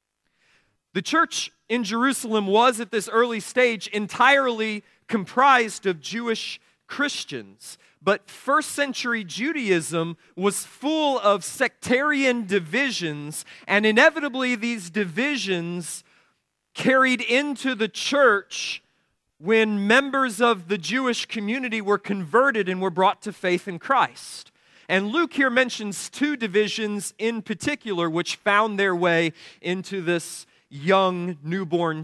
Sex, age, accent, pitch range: male, 40-59, American, 180-240 Hz